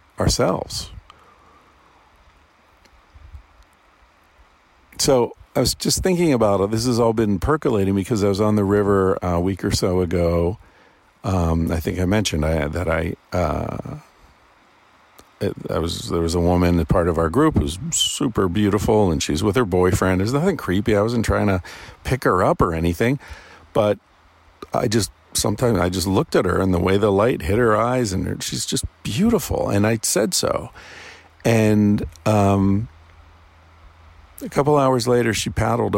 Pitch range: 80-105 Hz